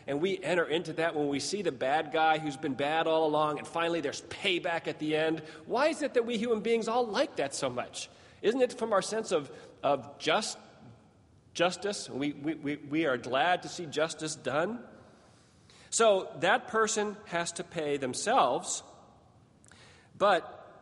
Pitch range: 130-175 Hz